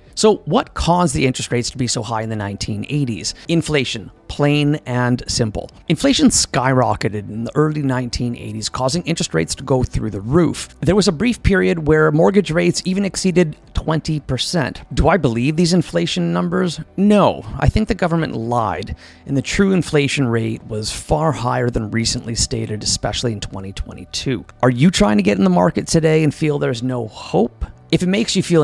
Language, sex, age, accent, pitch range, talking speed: English, male, 30-49, American, 110-160 Hz, 180 wpm